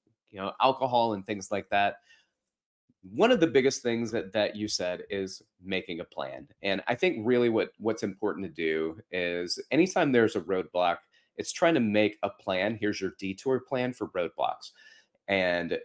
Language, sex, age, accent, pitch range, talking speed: English, male, 30-49, American, 95-120 Hz, 180 wpm